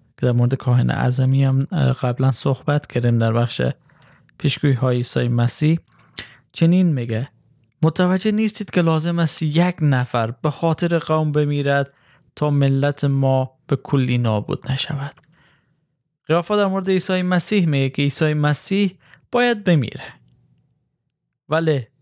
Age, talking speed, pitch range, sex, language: 20-39, 120 wpm, 135-170 Hz, male, Persian